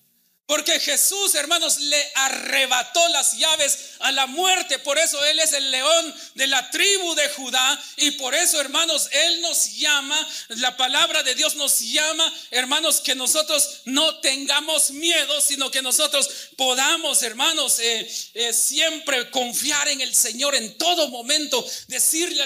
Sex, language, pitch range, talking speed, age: male, Spanish, 270-320 Hz, 150 wpm, 40-59